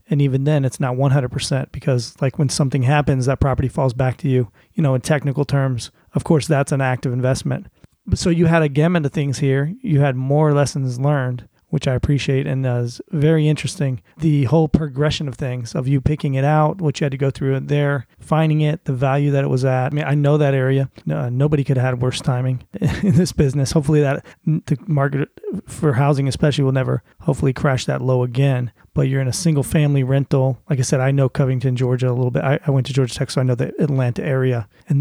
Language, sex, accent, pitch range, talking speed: English, male, American, 130-150 Hz, 225 wpm